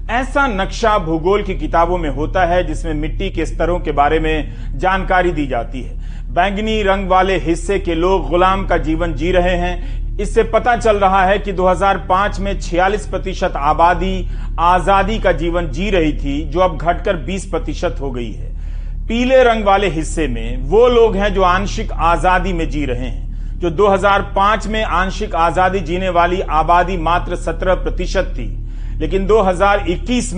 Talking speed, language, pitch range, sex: 165 wpm, Hindi, 170-215 Hz, male